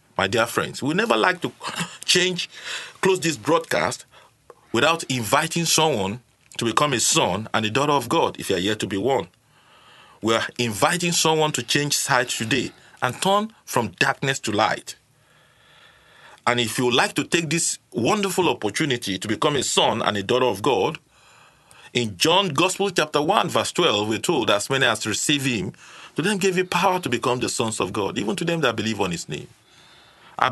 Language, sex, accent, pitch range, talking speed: English, male, Nigerian, 115-175 Hz, 195 wpm